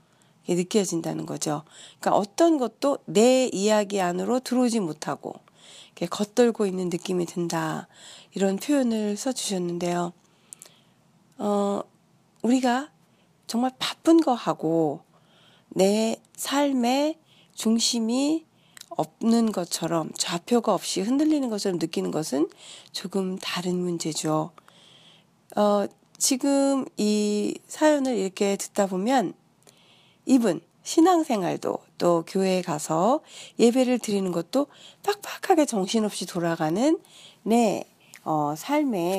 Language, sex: Korean, female